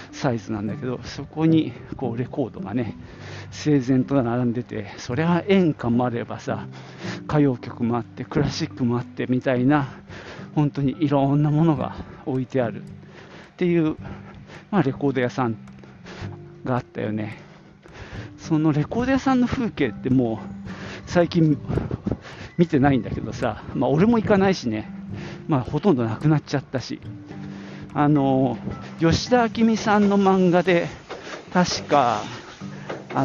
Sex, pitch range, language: male, 120-160 Hz, Japanese